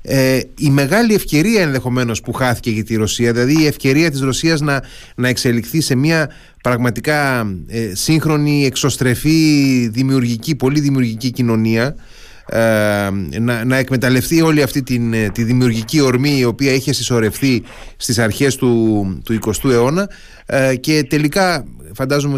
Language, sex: Greek, male